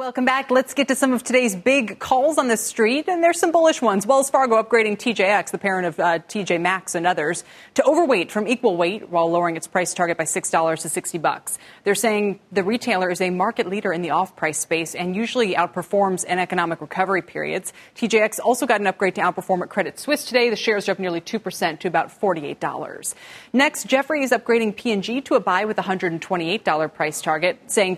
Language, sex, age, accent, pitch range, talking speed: English, female, 30-49, American, 175-235 Hz, 210 wpm